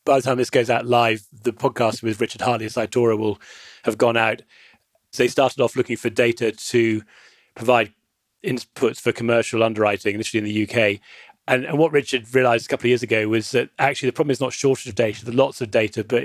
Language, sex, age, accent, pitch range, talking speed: English, male, 30-49, British, 110-125 Hz, 220 wpm